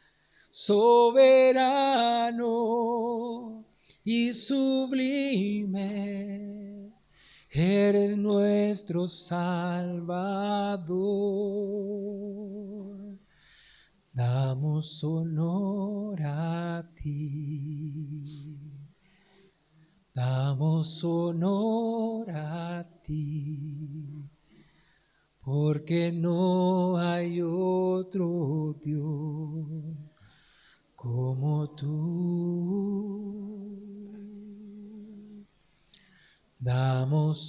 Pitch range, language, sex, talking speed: 150-200 Hz, Spanish, male, 35 wpm